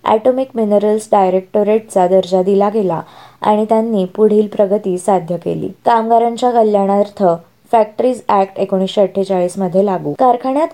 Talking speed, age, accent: 60 wpm, 20-39, native